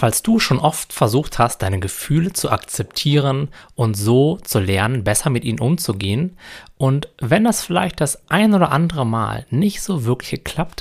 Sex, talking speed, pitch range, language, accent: male, 170 wpm, 105-140 Hz, German, German